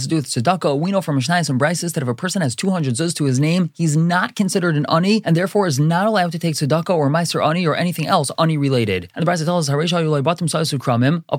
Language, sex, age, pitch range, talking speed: English, male, 20-39, 130-170 Hz, 240 wpm